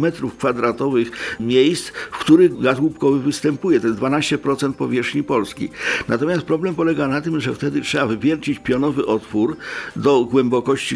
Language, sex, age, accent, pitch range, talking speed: Polish, male, 50-69, native, 120-150 Hz, 140 wpm